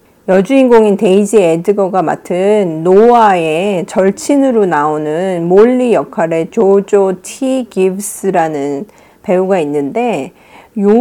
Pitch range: 170-240 Hz